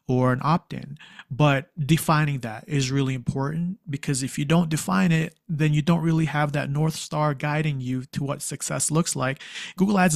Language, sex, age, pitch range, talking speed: English, male, 30-49, 130-155 Hz, 190 wpm